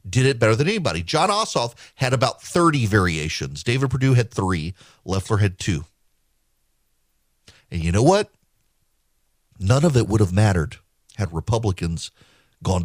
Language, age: English, 40-59